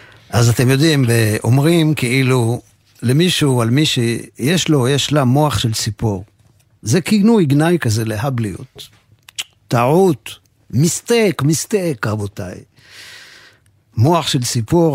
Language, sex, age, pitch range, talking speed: Hebrew, male, 50-69, 115-155 Hz, 110 wpm